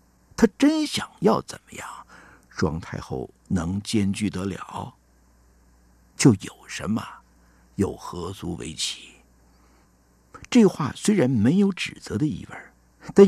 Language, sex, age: Chinese, male, 50-69